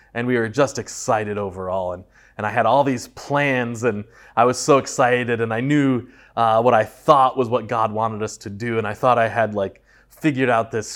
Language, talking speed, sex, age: English, 225 wpm, male, 20-39